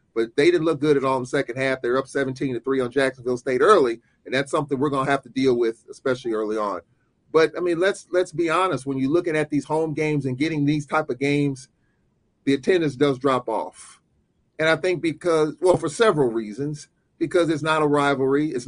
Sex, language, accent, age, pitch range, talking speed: male, English, American, 40-59, 140-175 Hz, 230 wpm